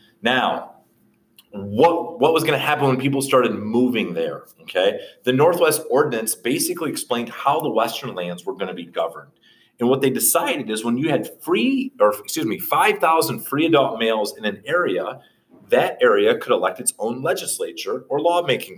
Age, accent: 40-59, American